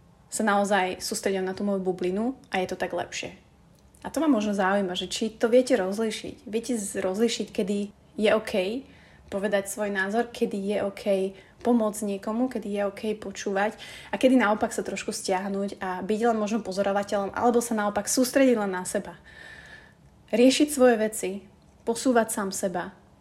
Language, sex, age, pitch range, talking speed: Slovak, female, 20-39, 195-230 Hz, 165 wpm